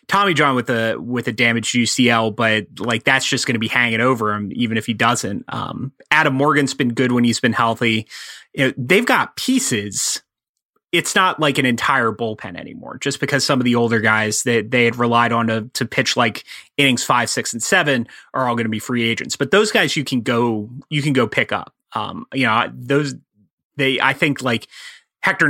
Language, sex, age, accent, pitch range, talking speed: English, male, 30-49, American, 115-135 Hz, 215 wpm